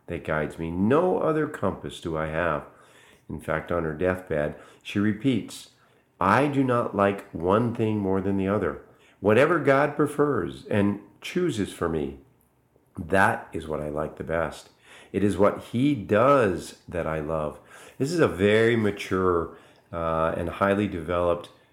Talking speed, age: 155 wpm, 50-69